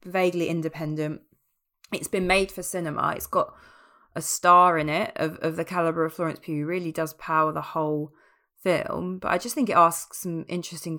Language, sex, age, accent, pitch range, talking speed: English, female, 20-39, British, 155-180 Hz, 190 wpm